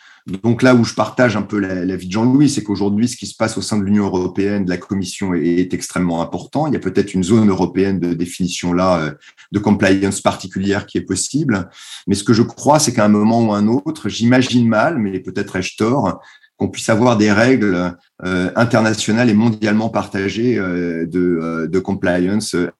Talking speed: 200 wpm